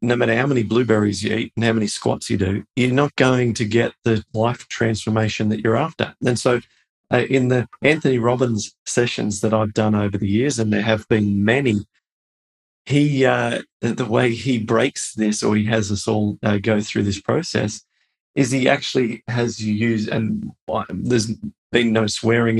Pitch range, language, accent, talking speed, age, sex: 110-135 Hz, English, Australian, 190 wpm, 40-59, male